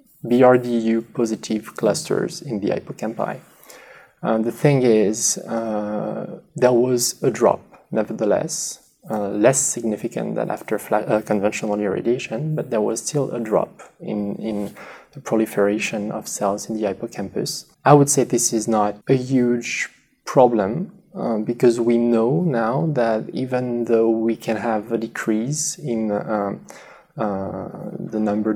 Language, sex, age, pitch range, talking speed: English, male, 20-39, 110-130 Hz, 135 wpm